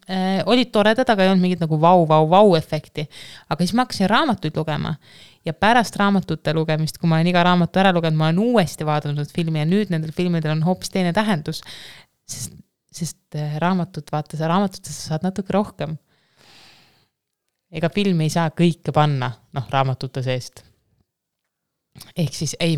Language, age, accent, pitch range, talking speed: English, 20-39, Finnish, 150-185 Hz, 155 wpm